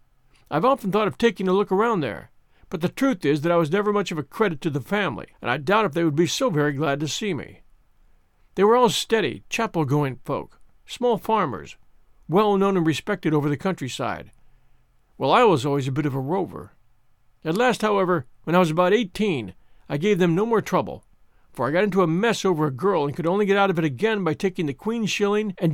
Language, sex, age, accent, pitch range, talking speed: English, male, 50-69, American, 150-205 Hz, 225 wpm